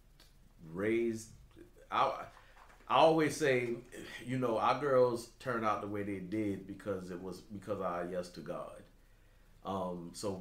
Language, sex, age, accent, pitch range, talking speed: English, male, 30-49, American, 90-110 Hz, 150 wpm